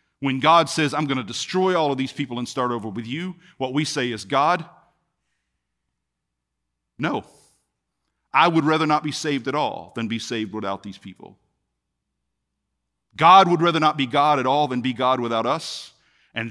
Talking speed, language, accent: 180 wpm, English, American